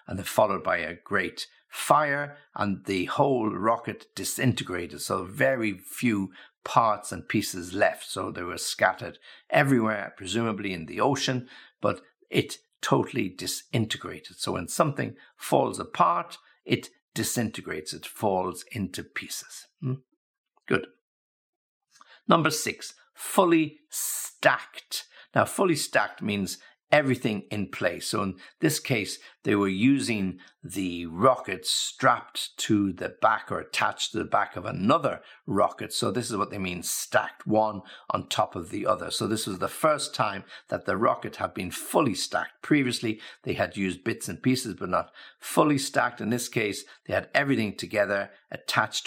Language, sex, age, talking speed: English, male, 60-79, 150 wpm